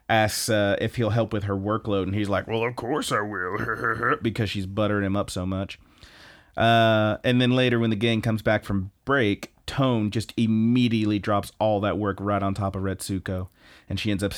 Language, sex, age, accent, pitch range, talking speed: English, male, 30-49, American, 95-110 Hz, 210 wpm